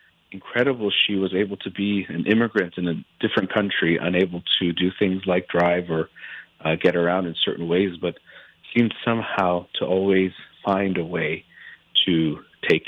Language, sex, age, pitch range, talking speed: English, male, 40-59, 85-100 Hz, 165 wpm